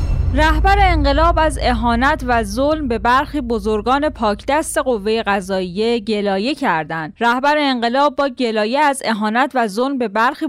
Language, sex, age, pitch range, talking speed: Persian, female, 10-29, 210-280 Hz, 145 wpm